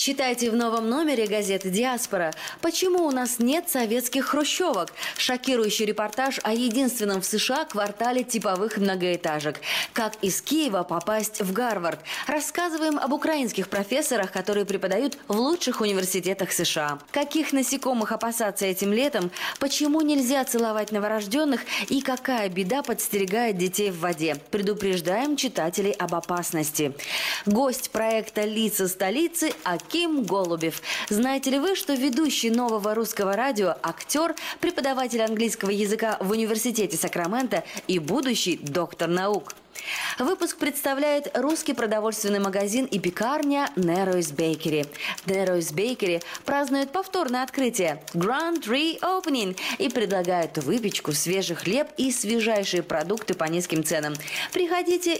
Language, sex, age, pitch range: Russian, female, 20-39, 190-275 Hz